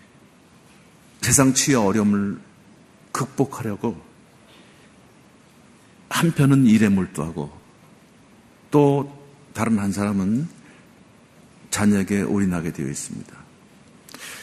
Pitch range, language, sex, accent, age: 110-145 Hz, Korean, male, native, 50-69